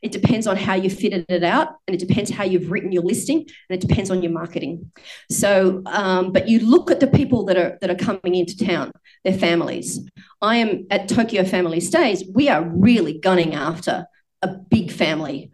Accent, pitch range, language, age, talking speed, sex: Australian, 180-220 Hz, English, 30-49, 205 wpm, female